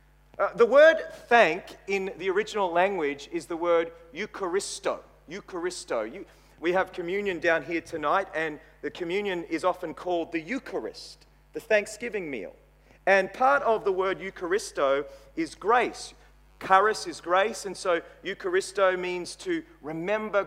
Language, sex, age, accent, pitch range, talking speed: English, male, 40-59, Australian, 180-260 Hz, 140 wpm